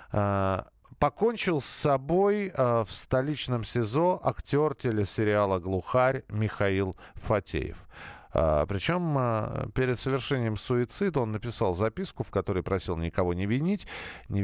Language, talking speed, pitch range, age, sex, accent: Russian, 105 wpm, 95-140 Hz, 40-59, male, native